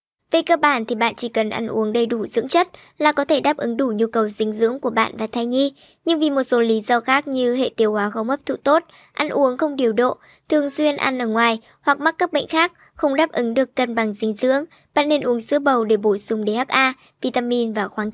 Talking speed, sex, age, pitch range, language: 260 wpm, male, 20-39, 235-295 Hz, Vietnamese